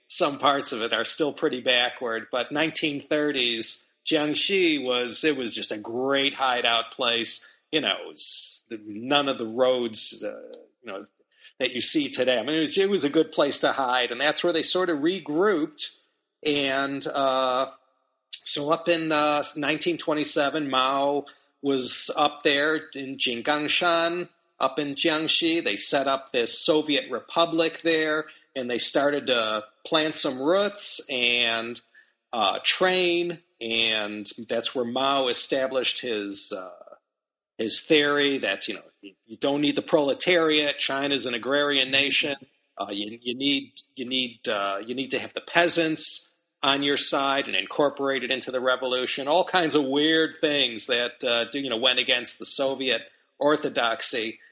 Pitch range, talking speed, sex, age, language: 130-165 Hz, 155 wpm, male, 40-59, English